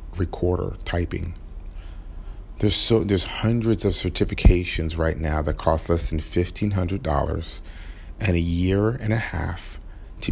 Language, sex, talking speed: English, male, 130 wpm